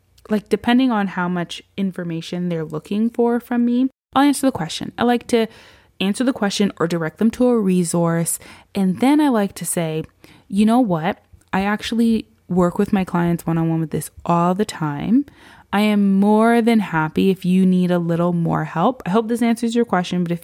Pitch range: 175-230 Hz